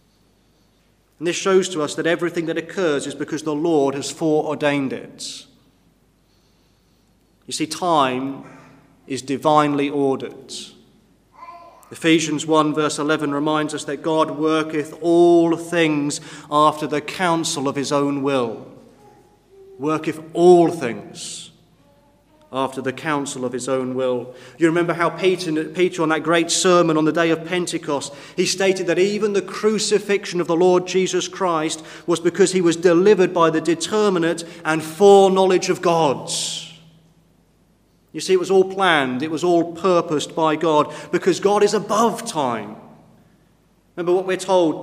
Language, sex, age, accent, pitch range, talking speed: English, male, 30-49, British, 155-200 Hz, 145 wpm